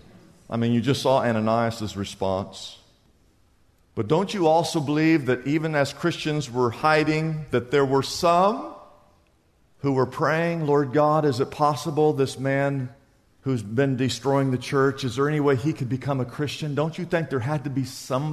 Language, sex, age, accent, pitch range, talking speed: English, male, 50-69, American, 140-200 Hz, 175 wpm